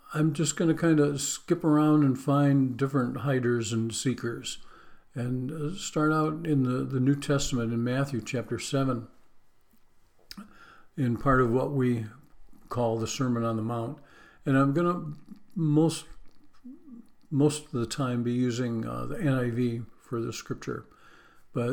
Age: 50-69